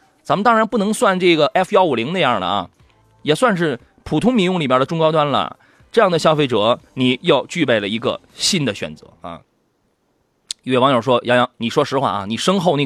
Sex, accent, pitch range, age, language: male, native, 125-165 Hz, 20-39, Chinese